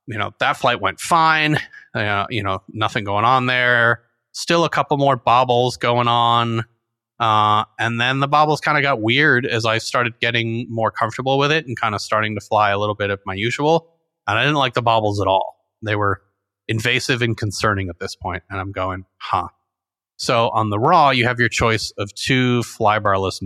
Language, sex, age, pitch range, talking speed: English, male, 30-49, 100-120 Hz, 205 wpm